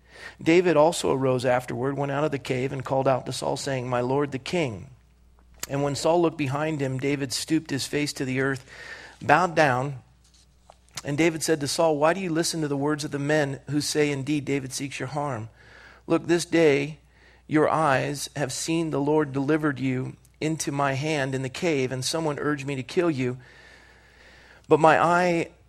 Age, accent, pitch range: 40-59, American, 130-155 Hz